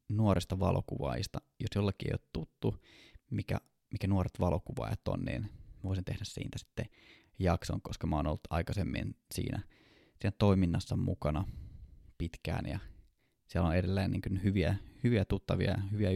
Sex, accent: male, native